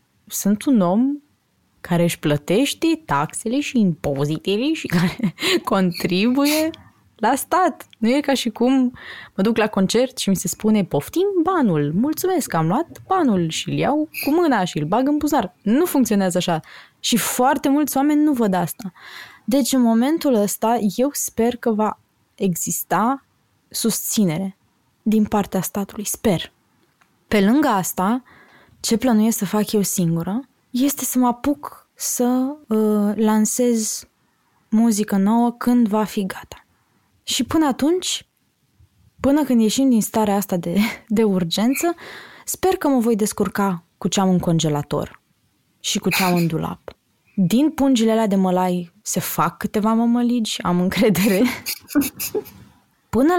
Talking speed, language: 145 wpm, Romanian